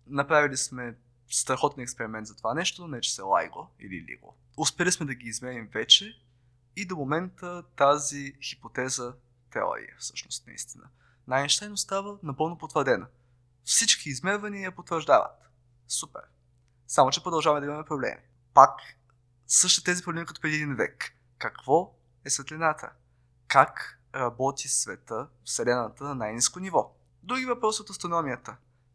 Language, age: Bulgarian, 20-39